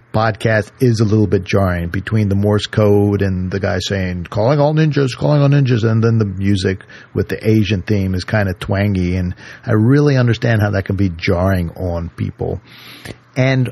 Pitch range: 100-120 Hz